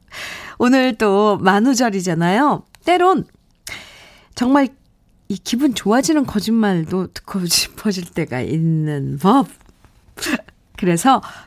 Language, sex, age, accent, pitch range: Korean, female, 40-59, native, 165-230 Hz